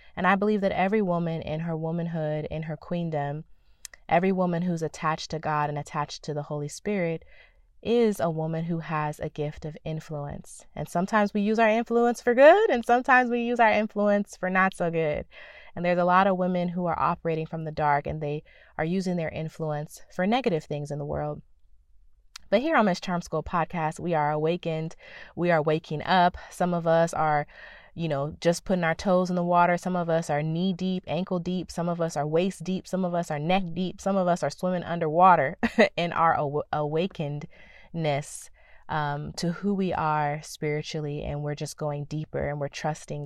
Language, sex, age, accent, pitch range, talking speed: English, female, 20-39, American, 150-185 Hz, 200 wpm